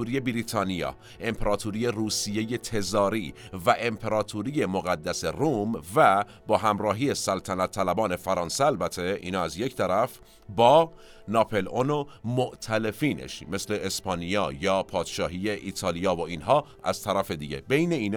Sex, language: male, Persian